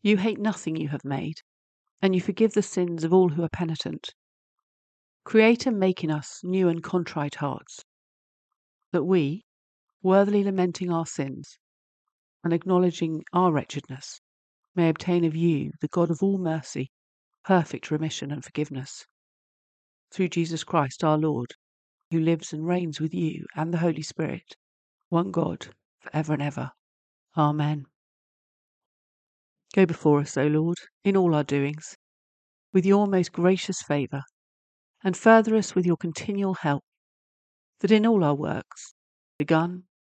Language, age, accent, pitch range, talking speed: English, 50-69, British, 145-180 Hz, 145 wpm